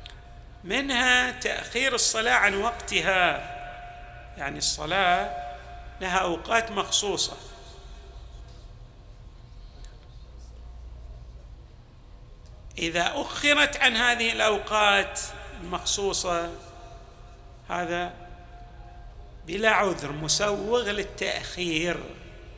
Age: 50-69